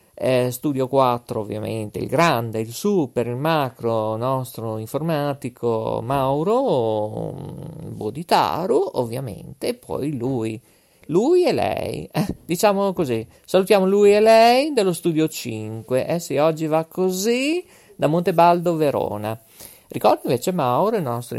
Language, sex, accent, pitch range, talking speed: Italian, male, native, 130-190 Hz, 125 wpm